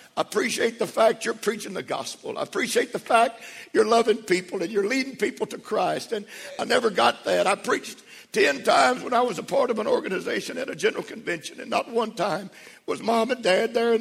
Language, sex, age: English, male, 60-79